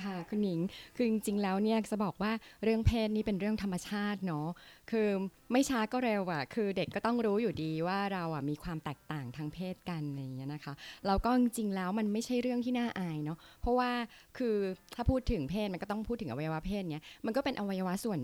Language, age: Thai, 20-39